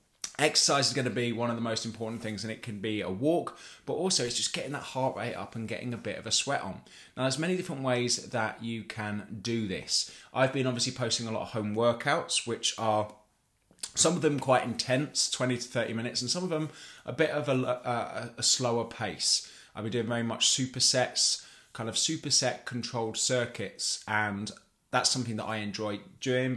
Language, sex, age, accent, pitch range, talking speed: English, male, 20-39, British, 110-125 Hz, 210 wpm